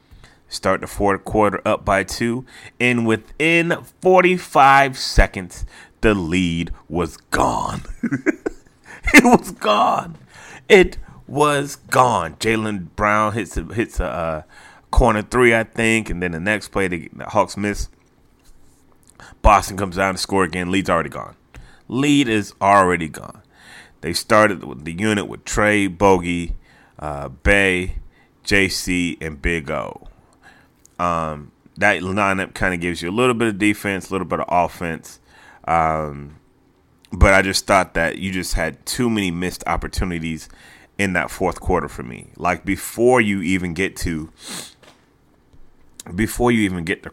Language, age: English, 30-49